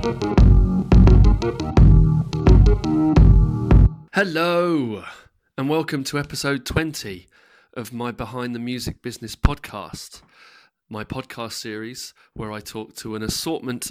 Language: English